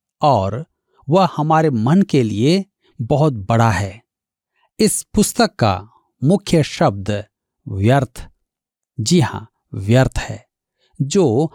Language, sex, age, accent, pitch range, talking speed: Hindi, male, 50-69, native, 115-180 Hz, 105 wpm